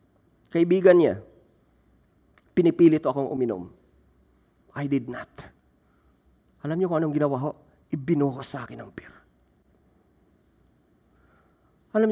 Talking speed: 100 wpm